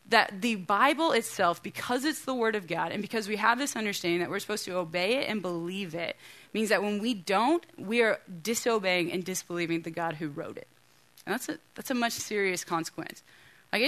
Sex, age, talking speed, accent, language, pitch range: female, 20-39, 210 wpm, American, English, 170-220 Hz